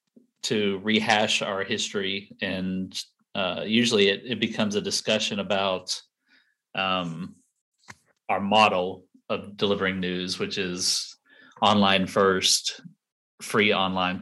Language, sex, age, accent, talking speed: English, male, 30-49, American, 105 wpm